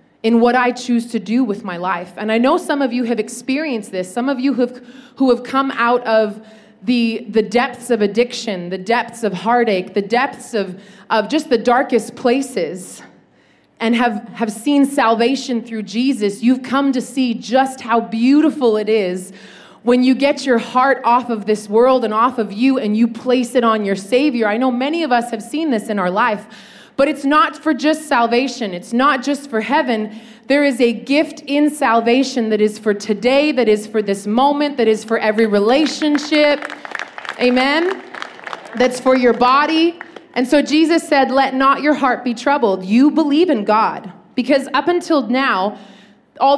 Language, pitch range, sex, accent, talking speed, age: English, 220-275 Hz, female, American, 185 wpm, 30-49